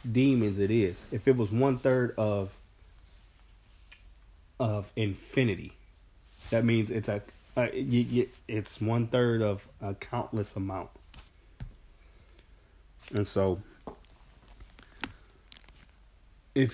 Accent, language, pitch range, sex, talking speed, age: American, English, 95-130 Hz, male, 85 wpm, 30-49